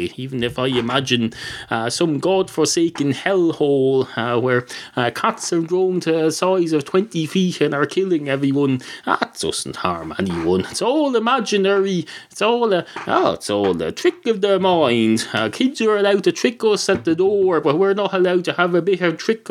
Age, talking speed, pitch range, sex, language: 30-49, 195 wpm, 135-200 Hz, male, English